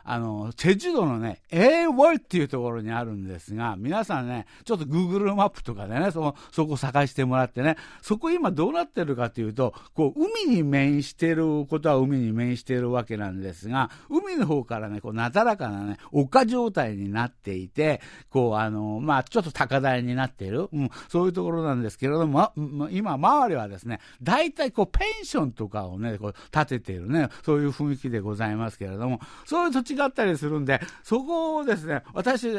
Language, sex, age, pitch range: Japanese, male, 60-79, 115-175 Hz